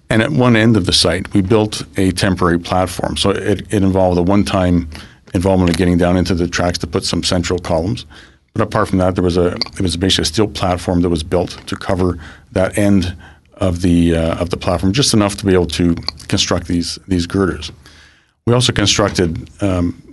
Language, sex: English, male